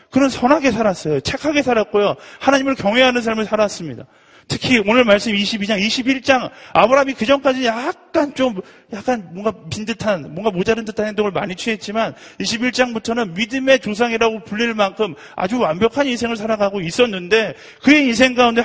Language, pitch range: Korean, 185-250 Hz